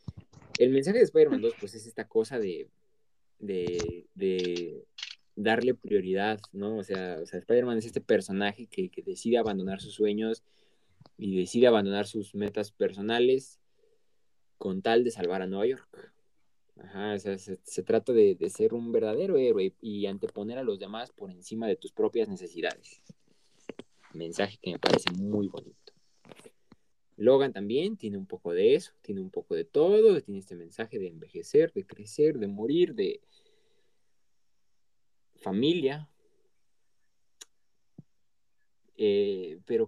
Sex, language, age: male, Spanish, 20-39